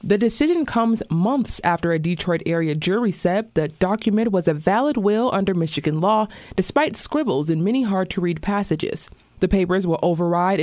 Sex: female